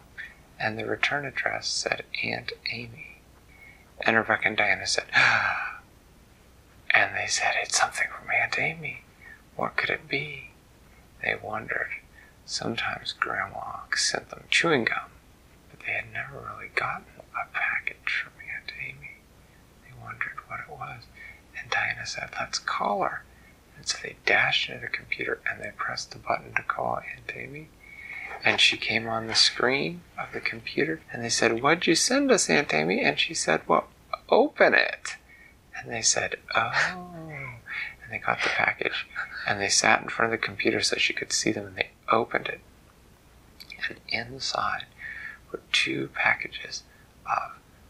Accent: American